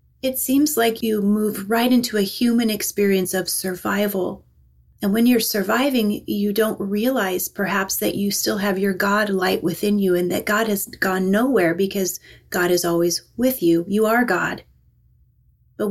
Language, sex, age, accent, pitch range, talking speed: English, female, 30-49, American, 175-220 Hz, 170 wpm